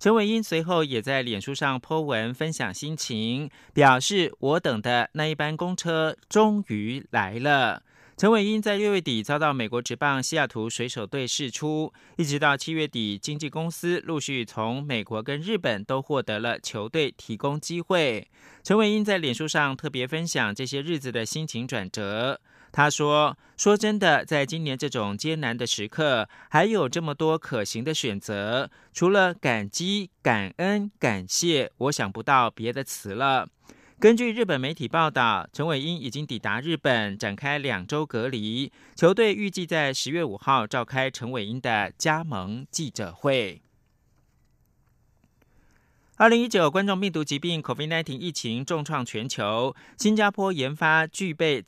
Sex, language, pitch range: male, German, 120-165 Hz